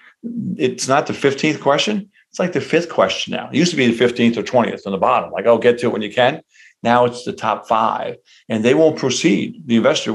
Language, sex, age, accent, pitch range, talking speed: English, male, 50-69, American, 110-125 Hz, 240 wpm